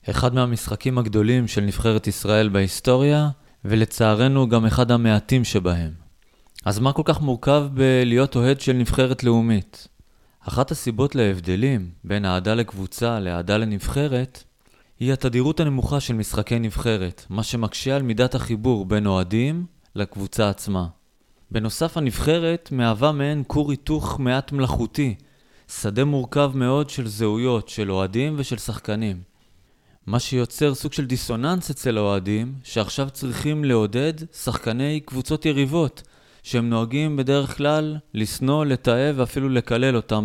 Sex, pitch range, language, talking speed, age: male, 105-135 Hz, Hebrew, 125 wpm, 30-49